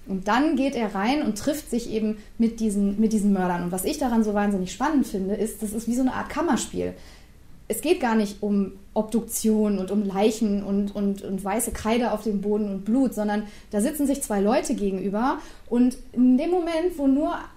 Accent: German